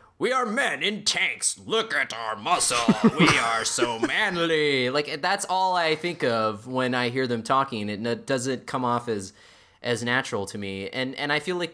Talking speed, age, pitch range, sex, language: 195 wpm, 20-39, 115-150 Hz, male, English